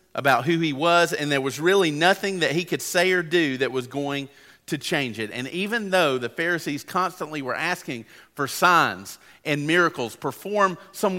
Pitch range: 115-150 Hz